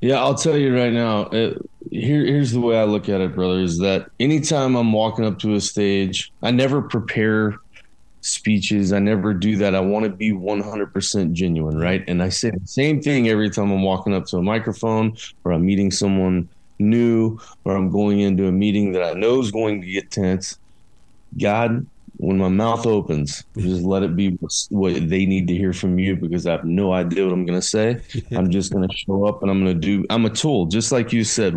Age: 20-39